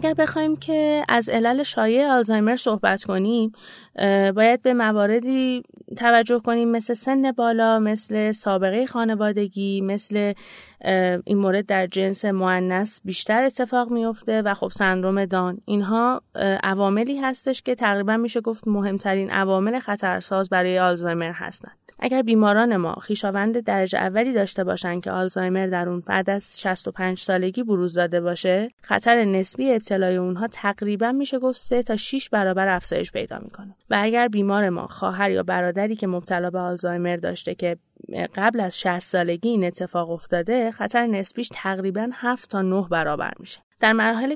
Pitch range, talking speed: 190-235 Hz, 145 wpm